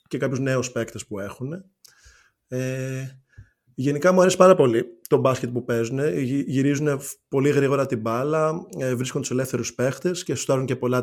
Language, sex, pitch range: Greek, male, 125-150 Hz